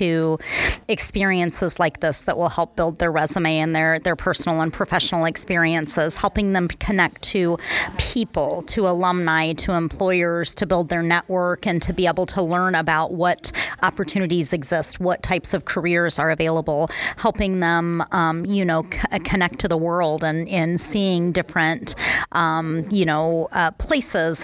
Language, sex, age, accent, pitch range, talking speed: English, female, 30-49, American, 160-185 Hz, 160 wpm